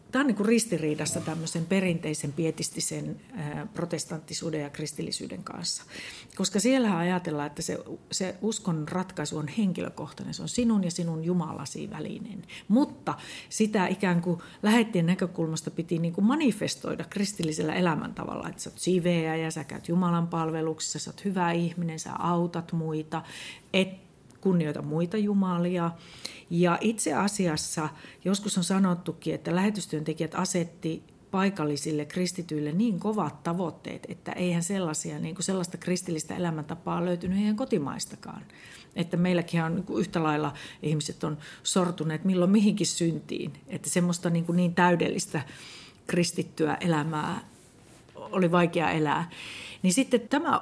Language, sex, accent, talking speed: Finnish, female, native, 130 wpm